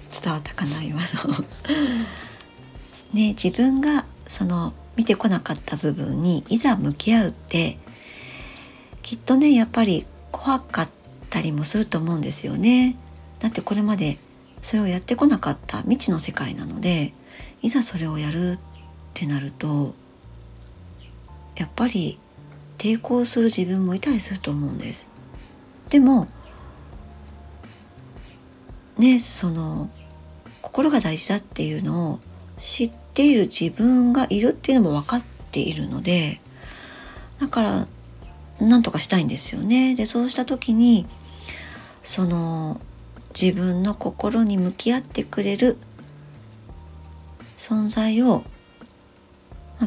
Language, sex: Japanese, male